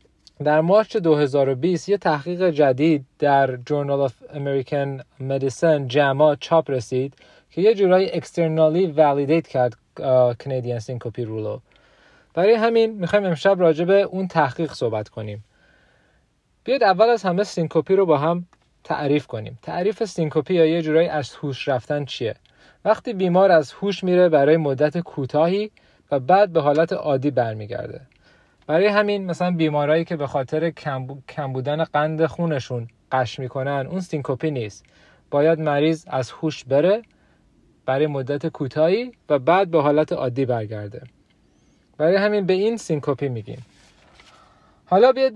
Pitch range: 135-180 Hz